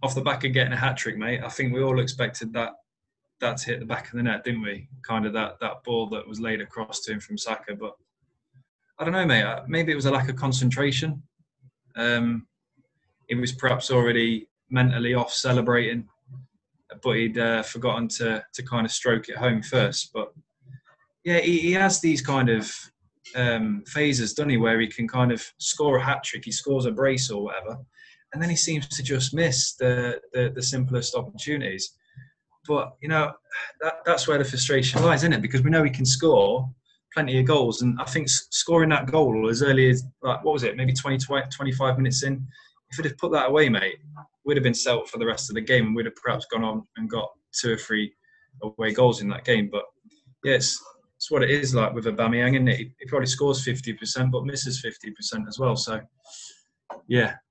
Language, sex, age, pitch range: English, male, 20-39, 115-140 Hz